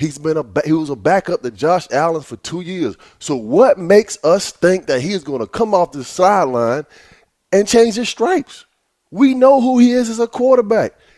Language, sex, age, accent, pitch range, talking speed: English, male, 20-39, American, 150-230 Hz, 210 wpm